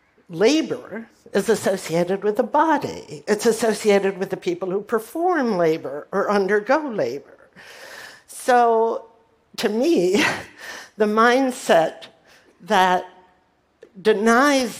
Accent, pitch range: American, 170-230 Hz